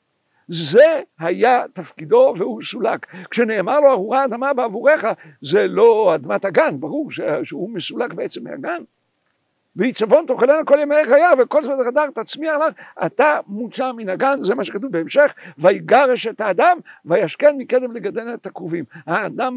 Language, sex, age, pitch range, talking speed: Hebrew, male, 60-79, 225-300 Hz, 145 wpm